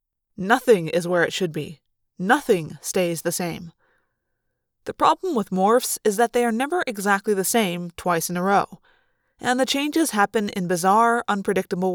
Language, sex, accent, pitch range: English, female, American, 185-250 Hz